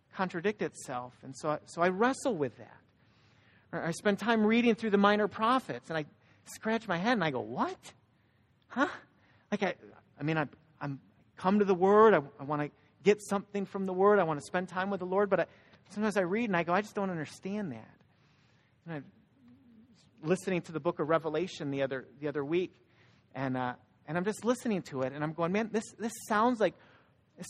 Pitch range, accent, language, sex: 145-215 Hz, American, English, male